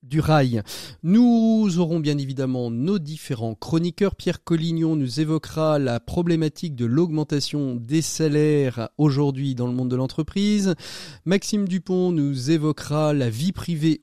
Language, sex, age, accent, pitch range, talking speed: French, male, 40-59, French, 130-165 Hz, 135 wpm